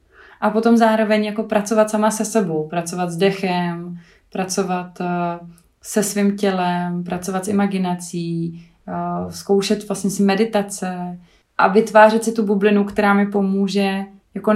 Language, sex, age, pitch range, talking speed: Czech, female, 20-39, 185-205 Hz, 135 wpm